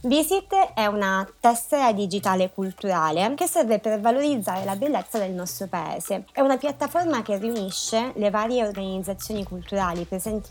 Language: Italian